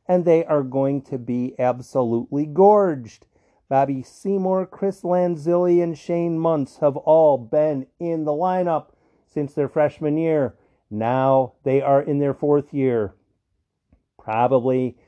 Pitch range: 130-165 Hz